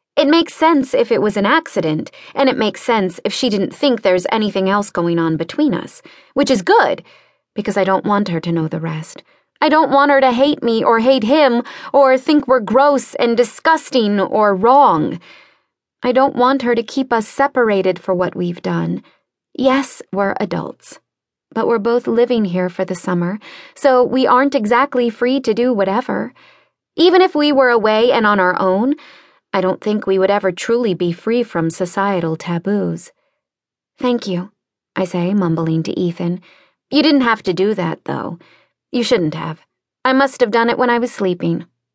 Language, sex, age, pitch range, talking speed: English, female, 20-39, 185-260 Hz, 185 wpm